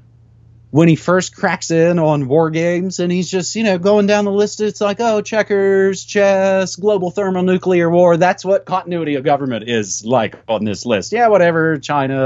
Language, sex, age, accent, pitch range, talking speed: English, male, 30-49, American, 125-185 Hz, 185 wpm